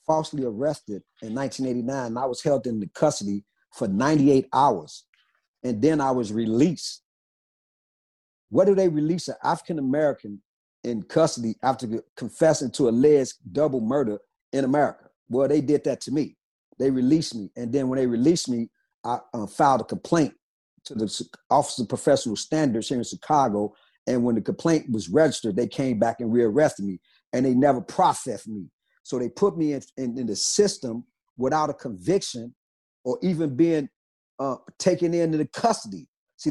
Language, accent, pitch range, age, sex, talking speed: English, American, 125-170 Hz, 40-59, male, 170 wpm